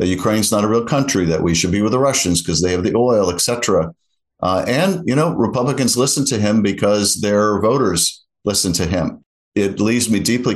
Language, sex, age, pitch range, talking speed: English, male, 50-69, 90-110 Hz, 205 wpm